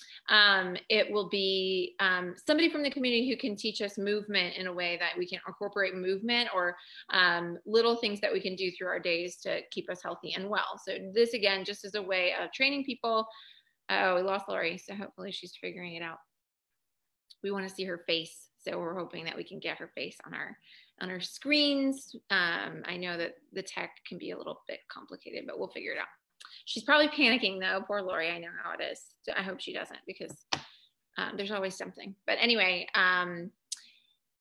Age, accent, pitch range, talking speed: 20-39, American, 185-240 Hz, 210 wpm